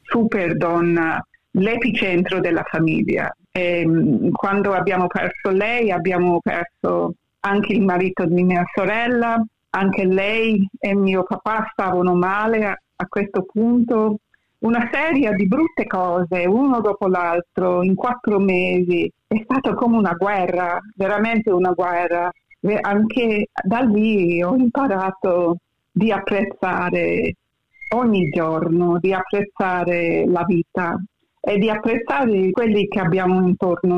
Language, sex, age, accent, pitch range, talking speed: Italian, female, 50-69, native, 180-215 Hz, 120 wpm